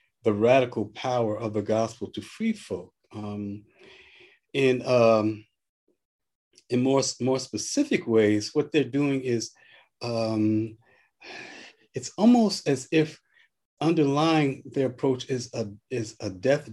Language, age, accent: English, 50-69, American